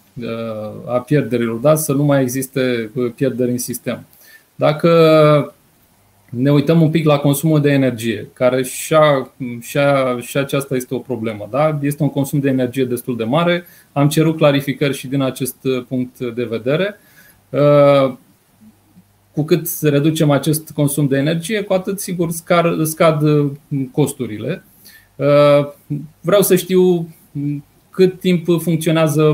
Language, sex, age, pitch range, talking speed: Romanian, male, 30-49, 135-165 Hz, 125 wpm